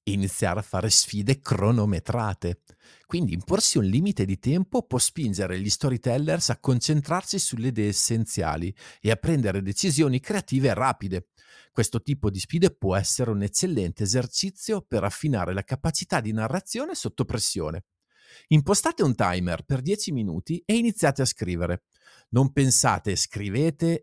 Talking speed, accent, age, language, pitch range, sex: 140 wpm, native, 50-69, Italian, 105-160 Hz, male